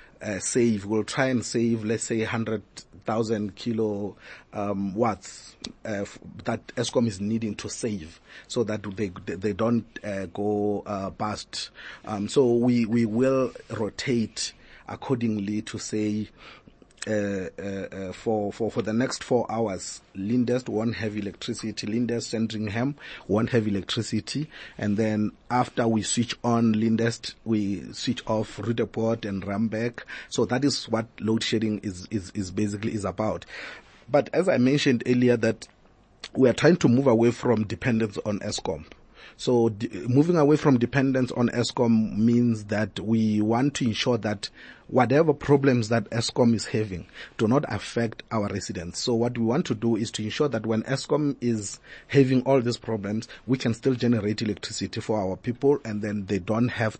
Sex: male